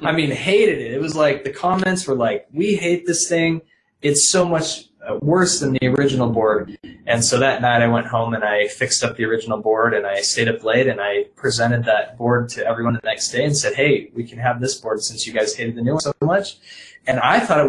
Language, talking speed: English, 250 wpm